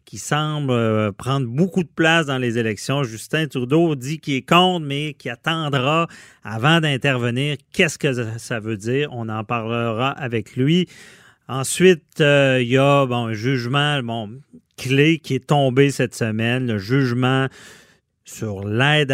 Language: French